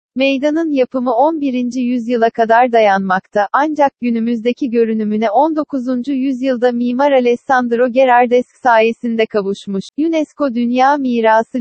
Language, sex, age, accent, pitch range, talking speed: Turkish, female, 40-59, native, 225-265 Hz, 100 wpm